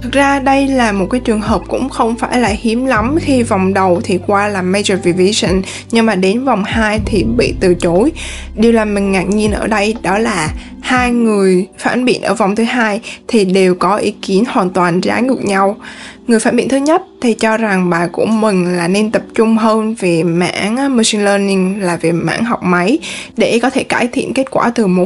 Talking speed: 220 wpm